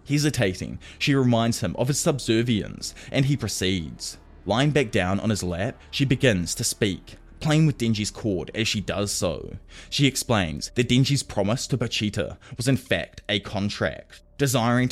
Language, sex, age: English, male, 20-39